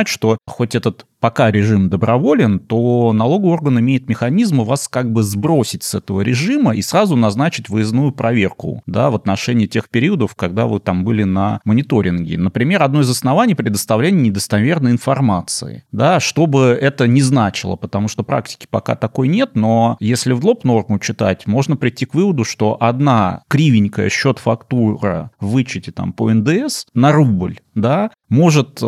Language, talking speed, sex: Russian, 160 wpm, male